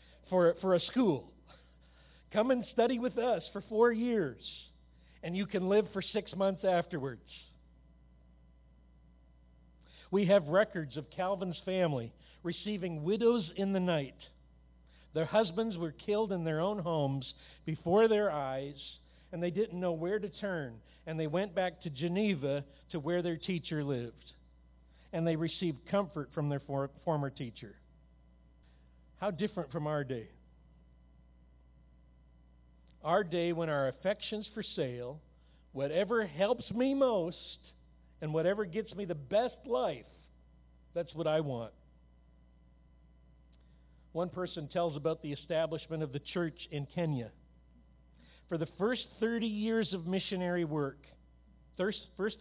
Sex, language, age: male, English, 50-69